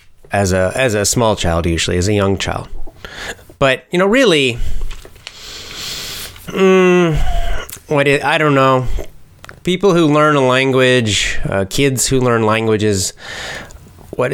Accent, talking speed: American, 135 wpm